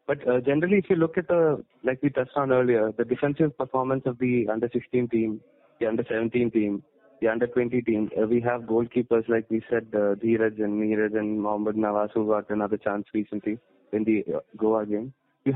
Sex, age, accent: male, 20-39, Indian